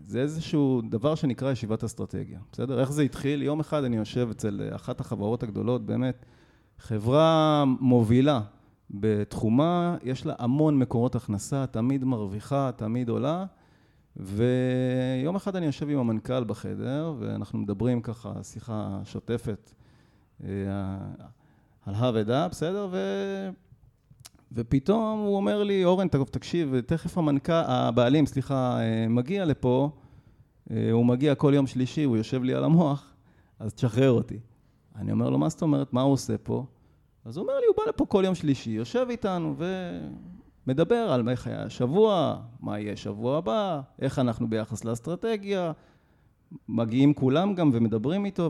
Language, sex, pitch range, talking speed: Hebrew, male, 115-150 Hz, 140 wpm